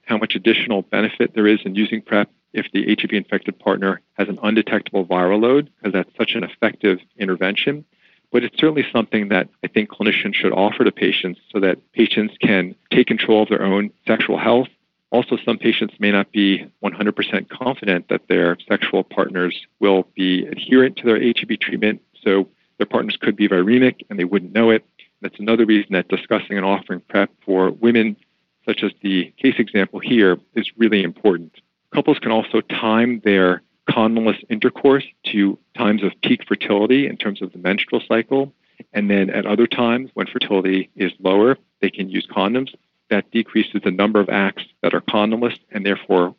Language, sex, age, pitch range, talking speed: English, male, 40-59, 95-115 Hz, 180 wpm